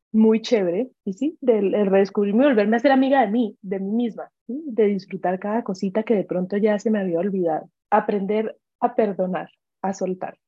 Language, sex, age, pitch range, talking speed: Spanish, female, 20-39, 195-235 Hz, 190 wpm